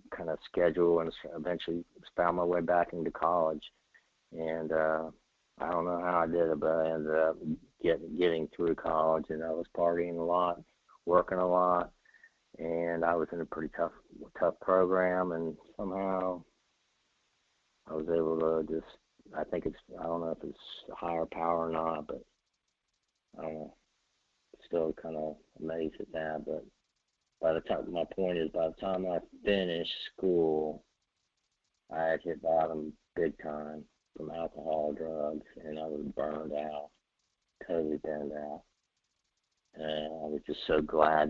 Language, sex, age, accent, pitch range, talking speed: English, male, 50-69, American, 80-90 Hz, 155 wpm